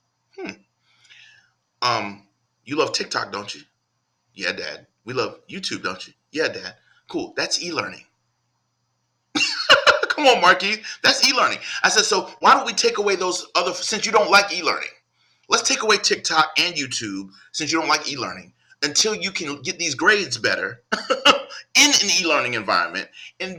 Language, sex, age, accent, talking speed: English, male, 30-49, American, 160 wpm